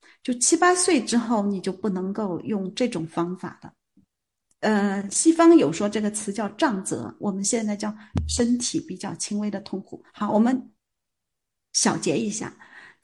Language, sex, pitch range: Chinese, female, 205-280 Hz